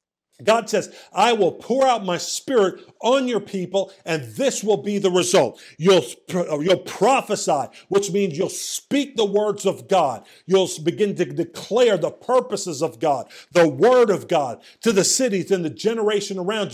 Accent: American